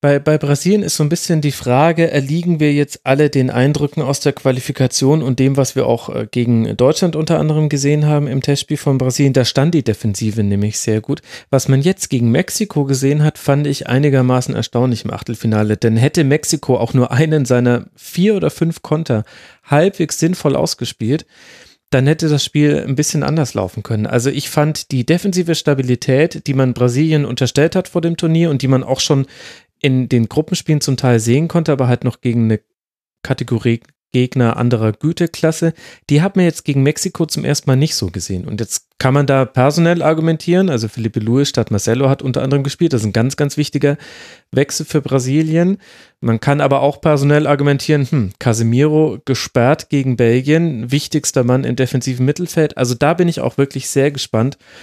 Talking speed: 190 wpm